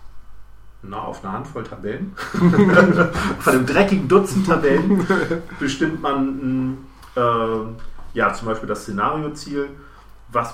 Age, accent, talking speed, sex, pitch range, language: 40-59, German, 100 wpm, male, 100-130 Hz, German